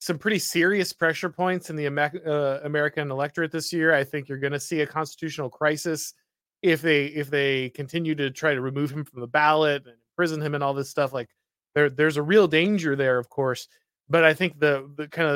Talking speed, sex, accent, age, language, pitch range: 220 wpm, male, American, 30-49, English, 140-170 Hz